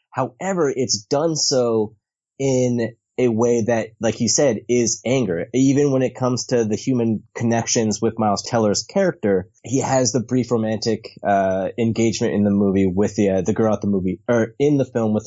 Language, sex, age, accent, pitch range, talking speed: English, male, 30-49, American, 110-130 Hz, 190 wpm